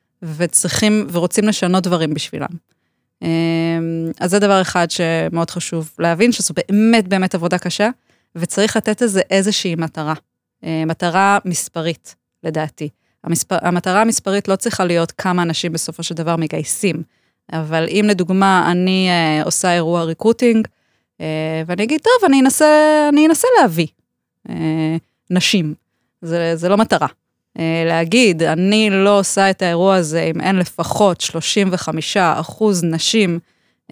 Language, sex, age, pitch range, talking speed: Hebrew, female, 20-39, 160-195 Hz, 130 wpm